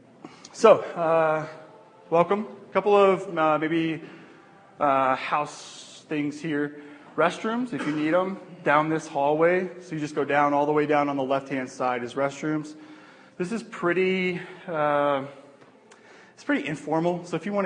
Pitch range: 130-165 Hz